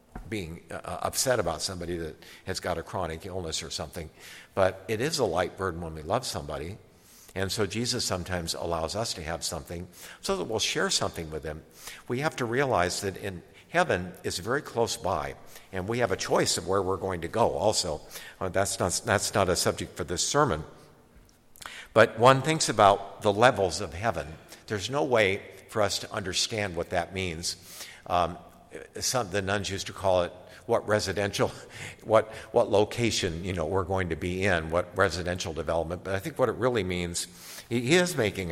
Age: 60-79